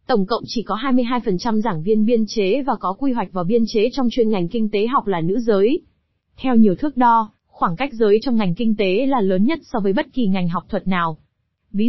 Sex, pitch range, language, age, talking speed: female, 205-245 Hz, Vietnamese, 20-39, 240 wpm